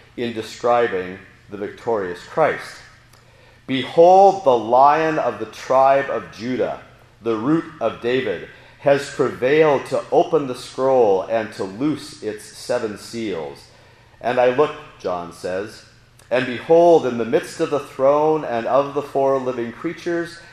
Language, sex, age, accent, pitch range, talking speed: English, male, 40-59, American, 115-140 Hz, 140 wpm